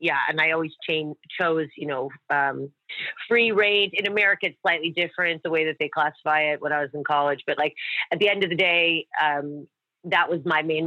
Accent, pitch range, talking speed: American, 160-190 Hz, 220 wpm